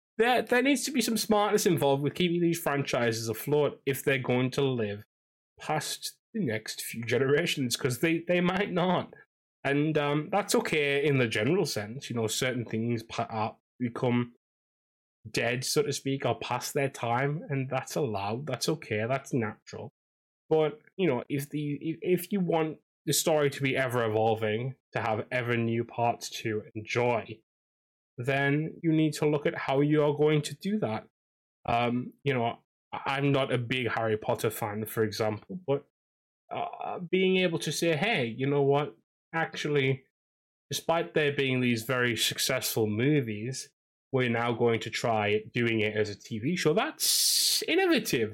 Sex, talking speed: male, 165 wpm